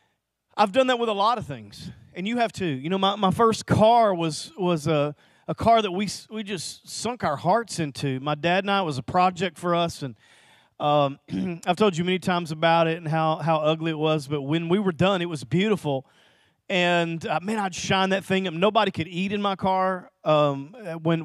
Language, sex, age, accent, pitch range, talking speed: English, male, 40-59, American, 160-220 Hz, 225 wpm